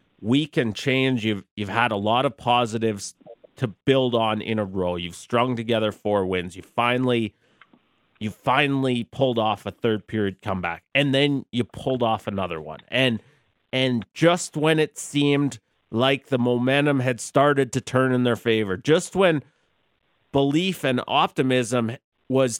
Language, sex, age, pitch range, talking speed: English, male, 30-49, 105-130 Hz, 160 wpm